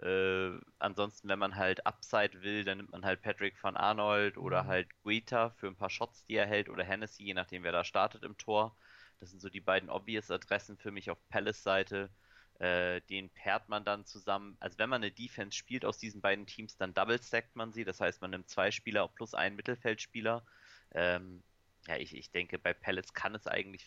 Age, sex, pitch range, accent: 20-39, male, 90-105 Hz, German